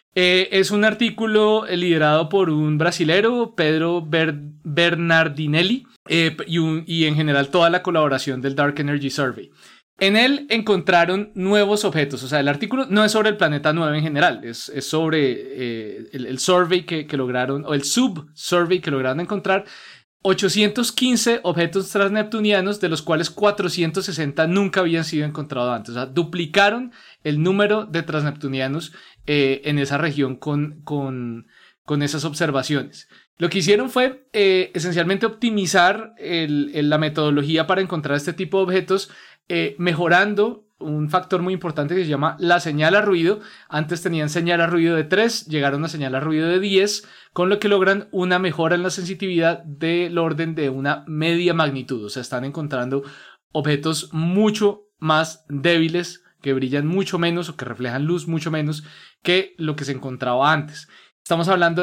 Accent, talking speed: Colombian, 165 wpm